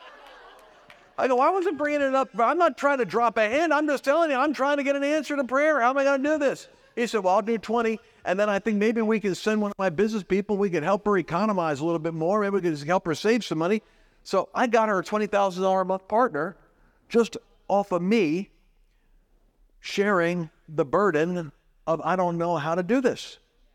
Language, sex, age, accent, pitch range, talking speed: English, male, 50-69, American, 170-235 Hz, 240 wpm